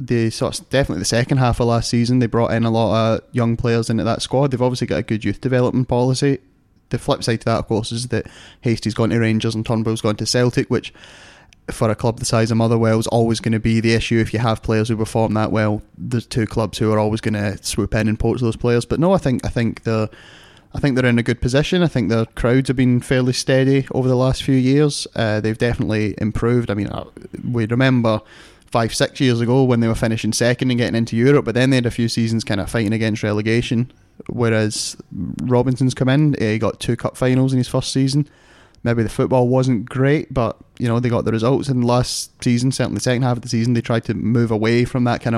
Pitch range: 110-125 Hz